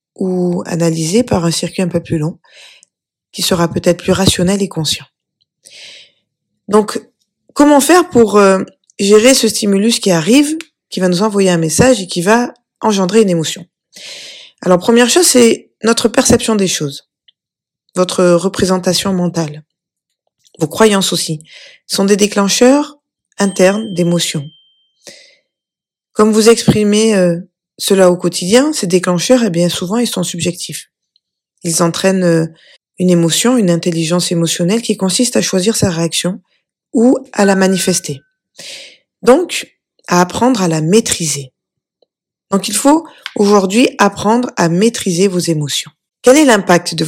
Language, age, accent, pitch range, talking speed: French, 20-39, French, 175-225 Hz, 140 wpm